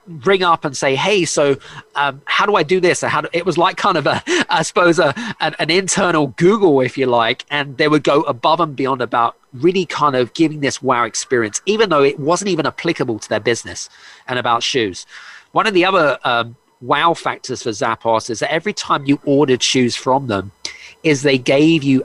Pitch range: 135-175 Hz